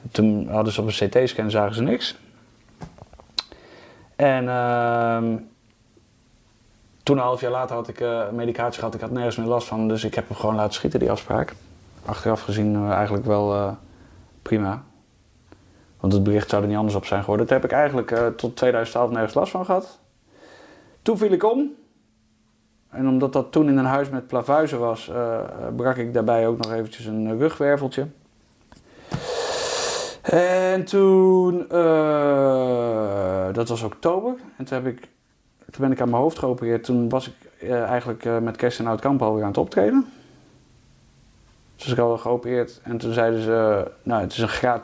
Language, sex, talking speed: Dutch, male, 175 wpm